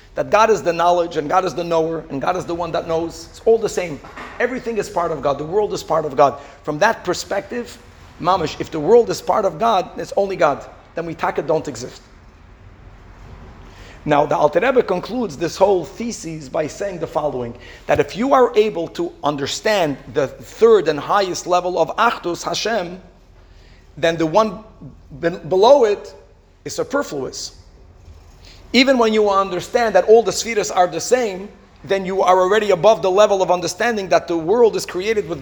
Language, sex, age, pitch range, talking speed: English, male, 40-59, 145-220 Hz, 190 wpm